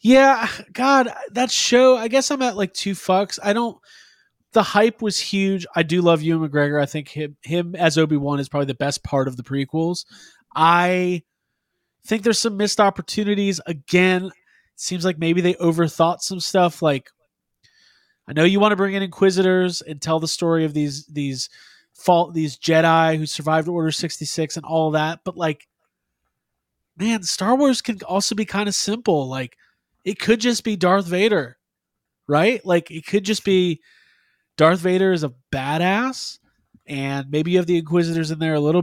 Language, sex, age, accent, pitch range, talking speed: English, male, 20-39, American, 150-195 Hz, 180 wpm